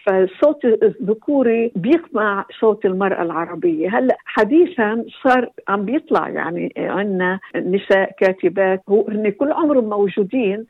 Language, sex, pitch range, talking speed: Arabic, female, 185-240 Hz, 105 wpm